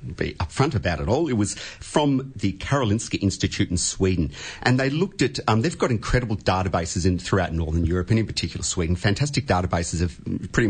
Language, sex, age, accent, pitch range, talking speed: English, male, 40-59, Australian, 95-115 Hz, 190 wpm